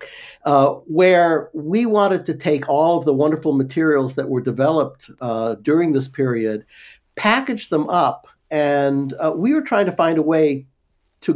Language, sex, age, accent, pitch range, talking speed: English, male, 60-79, American, 120-160 Hz, 165 wpm